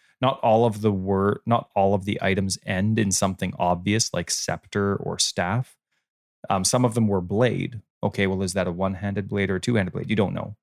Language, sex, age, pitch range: English, male, 20-39, 95-110 Hz